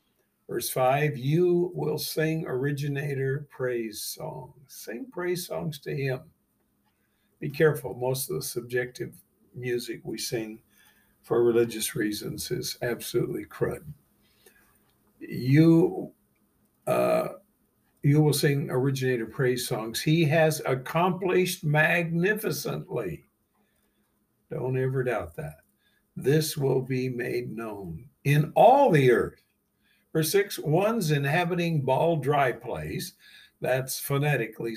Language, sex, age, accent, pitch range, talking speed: English, male, 60-79, American, 125-155 Hz, 105 wpm